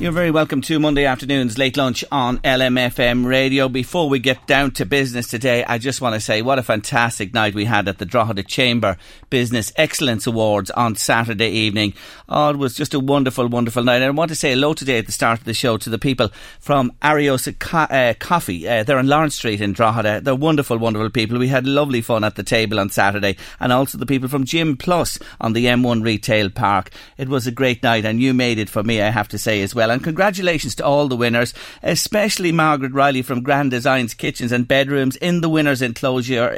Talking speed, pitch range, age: 220 wpm, 115-145 Hz, 40-59